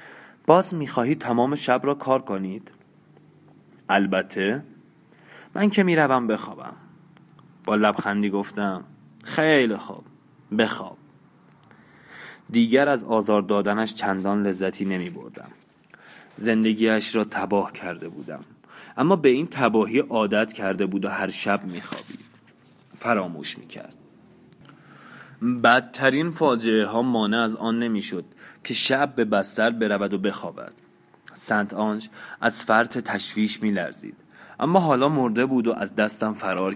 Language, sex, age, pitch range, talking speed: Persian, male, 30-49, 100-125 Hz, 115 wpm